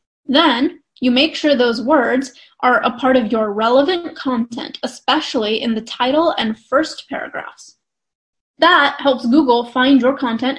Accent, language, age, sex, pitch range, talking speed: American, English, 10-29, female, 235-305 Hz, 145 wpm